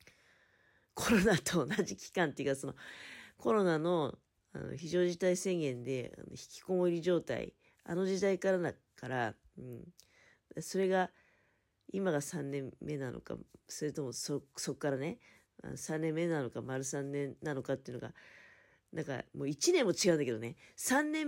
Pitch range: 130-195 Hz